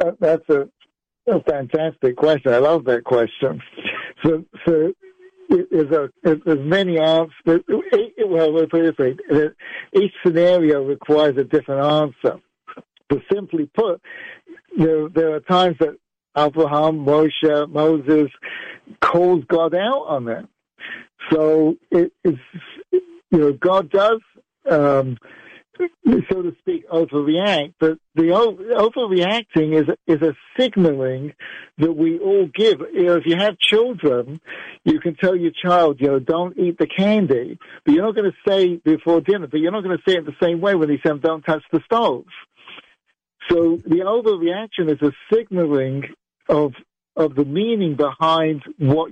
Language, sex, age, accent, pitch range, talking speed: English, male, 60-79, American, 155-200 Hz, 150 wpm